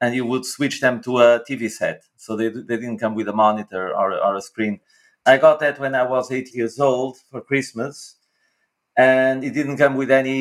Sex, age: male, 30-49